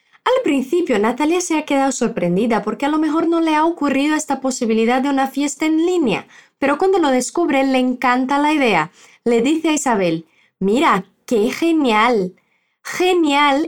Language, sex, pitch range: Portuguese, female, 225-315 Hz